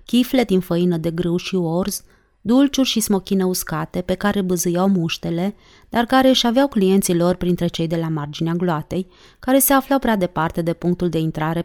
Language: Romanian